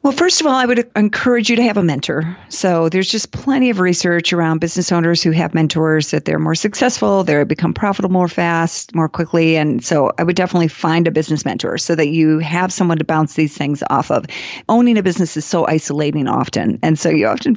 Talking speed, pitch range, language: 225 wpm, 160-205 Hz, English